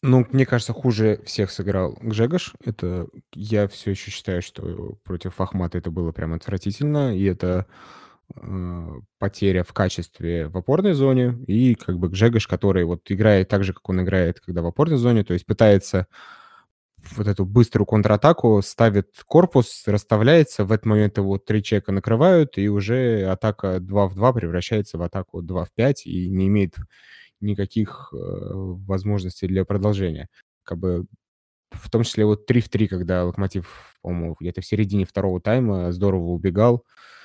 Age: 20-39